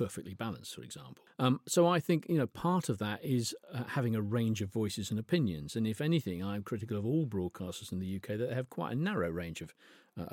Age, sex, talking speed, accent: 40-59, male, 240 wpm, British